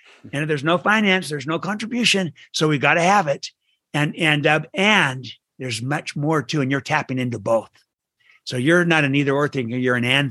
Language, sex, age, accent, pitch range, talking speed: English, male, 60-79, American, 130-165 Hz, 210 wpm